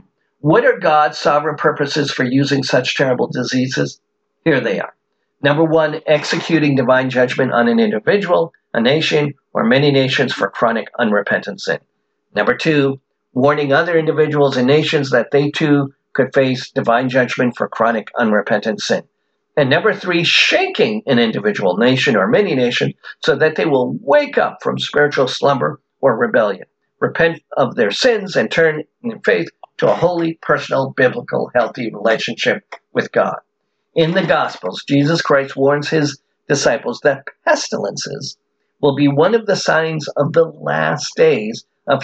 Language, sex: English, male